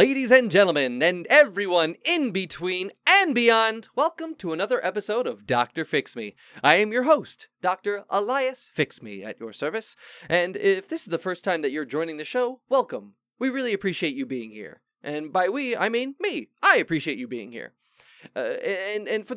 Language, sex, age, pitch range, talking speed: English, male, 20-39, 150-245 Hz, 190 wpm